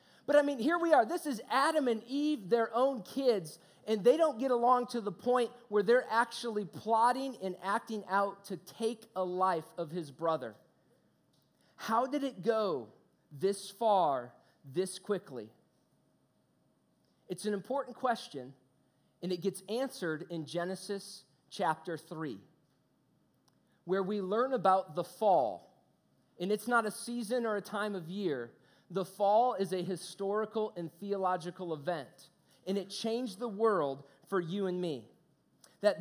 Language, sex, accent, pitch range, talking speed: English, male, American, 180-240 Hz, 150 wpm